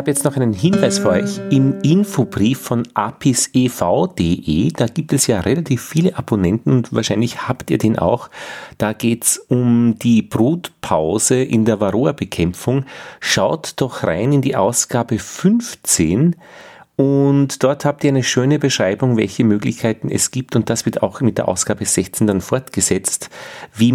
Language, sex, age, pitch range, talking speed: German, male, 40-59, 90-125 Hz, 155 wpm